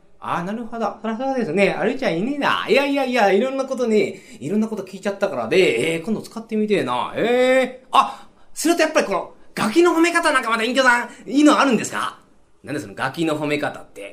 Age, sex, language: 30-49, male, Japanese